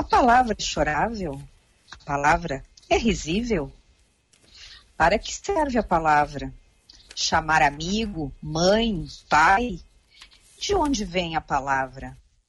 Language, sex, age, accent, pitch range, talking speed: Portuguese, female, 50-69, Brazilian, 160-205 Hz, 105 wpm